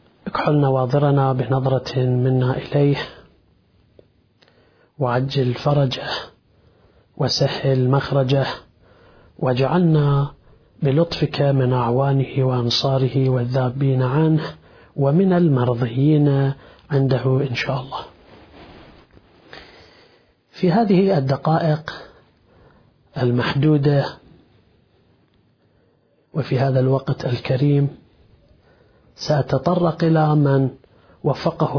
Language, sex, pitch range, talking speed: Arabic, male, 130-150 Hz, 65 wpm